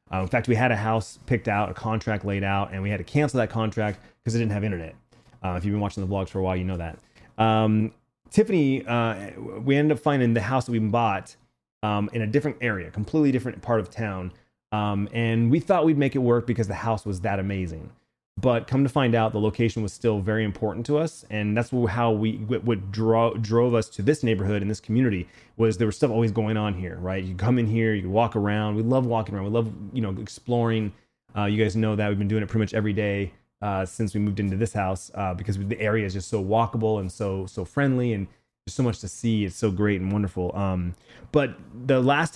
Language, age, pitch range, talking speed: English, 30-49, 100-120 Hz, 245 wpm